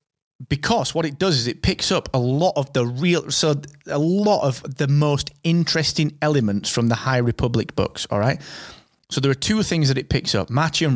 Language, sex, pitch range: English, male, 110-150 Hz